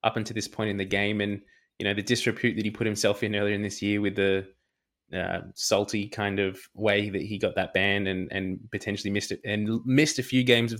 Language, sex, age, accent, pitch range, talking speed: English, male, 20-39, Australian, 105-120 Hz, 245 wpm